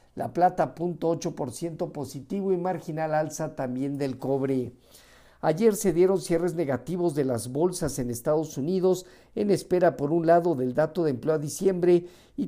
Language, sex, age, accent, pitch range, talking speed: Spanish, male, 50-69, Mexican, 140-175 Hz, 165 wpm